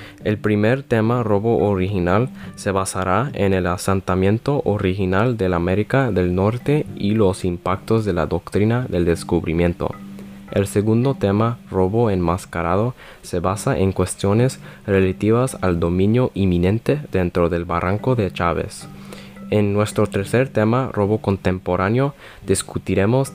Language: English